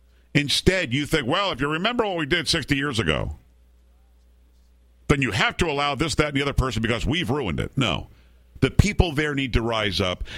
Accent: American